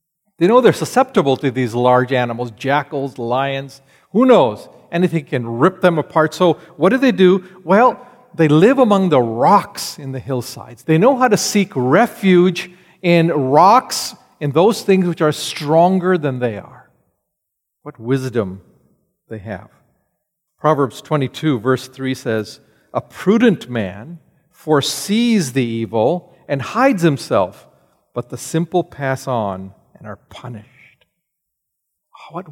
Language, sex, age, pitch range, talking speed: English, male, 50-69, 130-185 Hz, 140 wpm